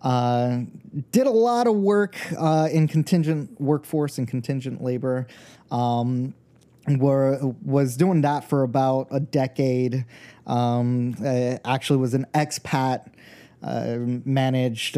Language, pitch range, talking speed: English, 120-145 Hz, 120 wpm